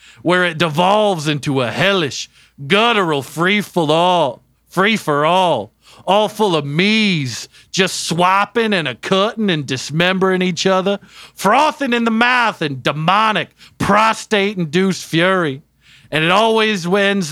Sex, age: male, 40-59